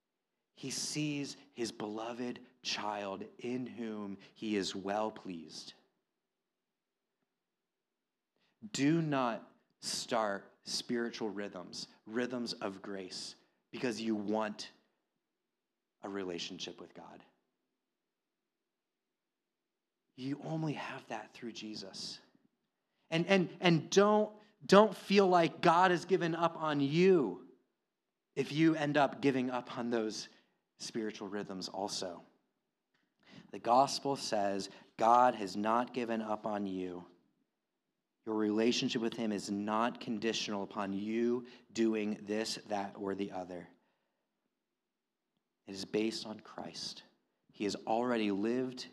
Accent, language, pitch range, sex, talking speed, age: American, English, 105-130 Hz, male, 110 wpm, 30-49